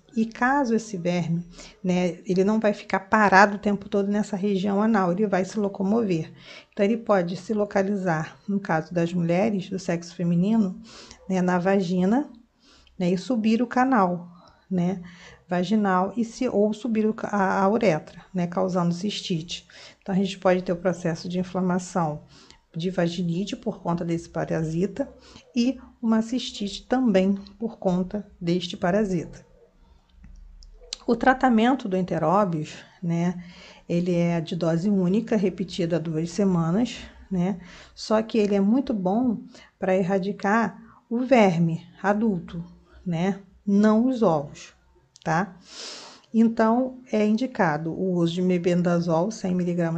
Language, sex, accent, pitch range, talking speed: Portuguese, female, Brazilian, 175-210 Hz, 135 wpm